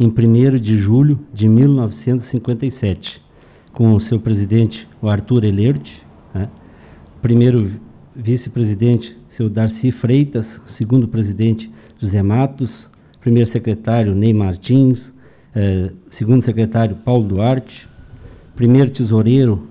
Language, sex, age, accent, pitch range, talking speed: Portuguese, male, 60-79, Brazilian, 110-130 Hz, 105 wpm